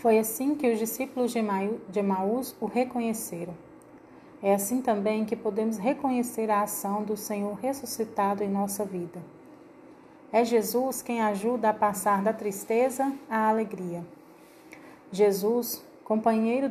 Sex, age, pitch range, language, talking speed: female, 40-59, 205-255 Hz, Portuguese, 125 wpm